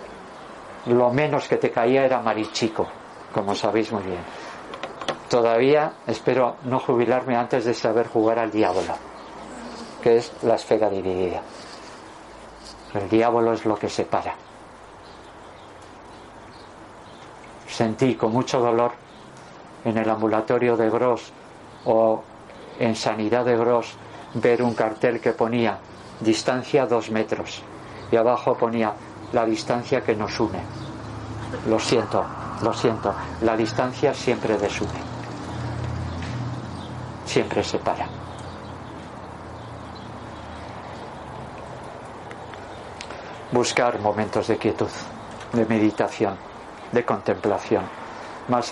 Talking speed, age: 100 wpm, 50-69